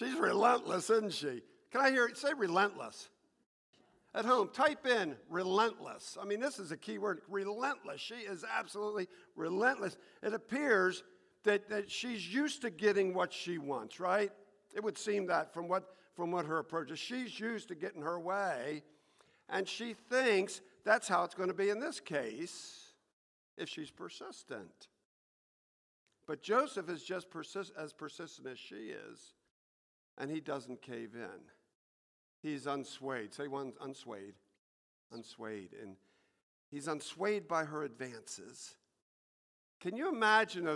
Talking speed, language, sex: 150 wpm, English, male